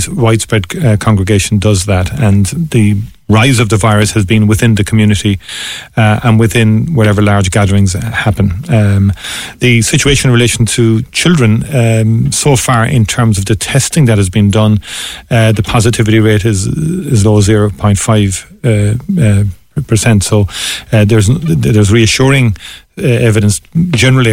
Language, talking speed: English, 155 wpm